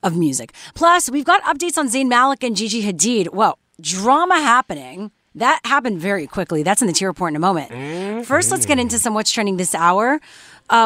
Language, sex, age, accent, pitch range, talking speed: English, female, 30-49, American, 185-250 Hz, 205 wpm